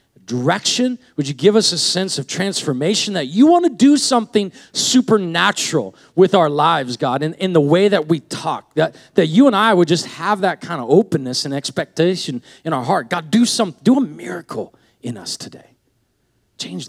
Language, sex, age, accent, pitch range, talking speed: English, male, 40-59, American, 120-180 Hz, 190 wpm